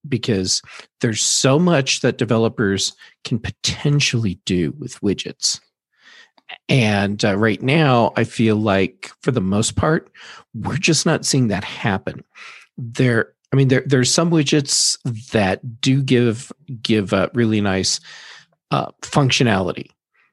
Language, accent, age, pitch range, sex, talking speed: English, American, 40-59, 110-135 Hz, male, 130 wpm